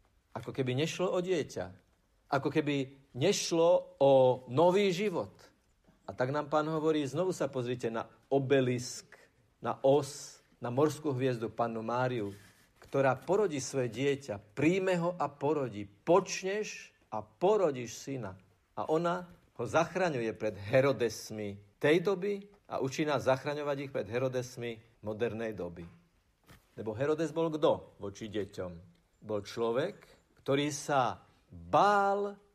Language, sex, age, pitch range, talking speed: Slovak, male, 50-69, 110-165 Hz, 125 wpm